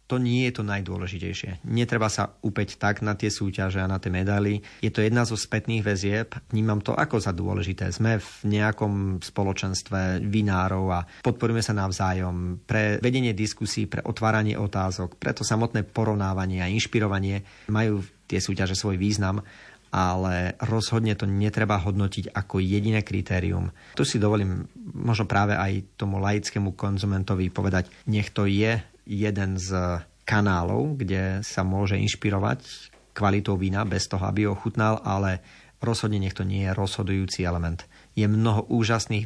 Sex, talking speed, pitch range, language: male, 150 wpm, 95-110 Hz, Slovak